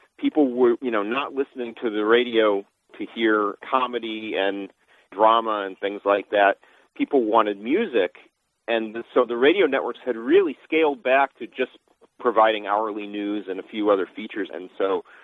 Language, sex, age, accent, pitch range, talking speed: English, male, 40-59, American, 105-145 Hz, 165 wpm